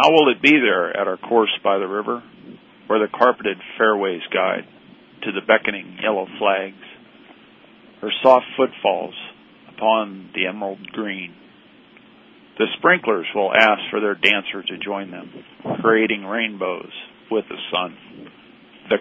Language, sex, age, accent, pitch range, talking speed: English, male, 50-69, American, 105-120 Hz, 140 wpm